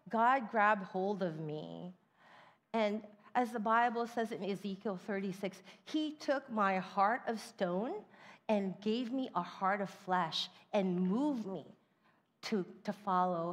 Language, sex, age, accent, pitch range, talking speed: English, female, 40-59, American, 170-220 Hz, 140 wpm